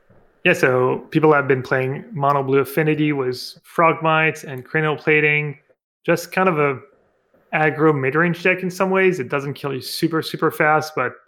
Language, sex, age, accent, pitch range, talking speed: English, male, 20-39, Canadian, 135-160 Hz, 175 wpm